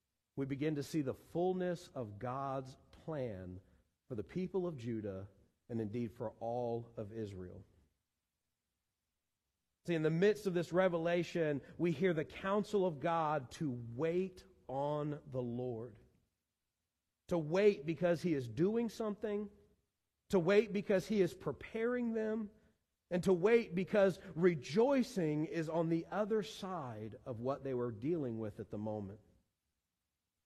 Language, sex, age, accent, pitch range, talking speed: English, male, 40-59, American, 120-195 Hz, 140 wpm